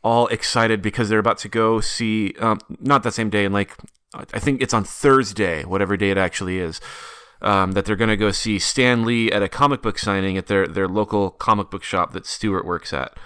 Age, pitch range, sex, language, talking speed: 30-49, 100-115 Hz, male, English, 215 wpm